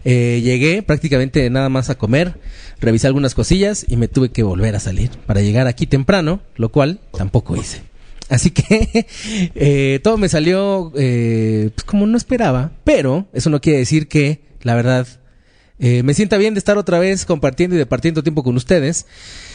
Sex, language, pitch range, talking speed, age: male, Spanish, 125-175 Hz, 180 wpm, 30-49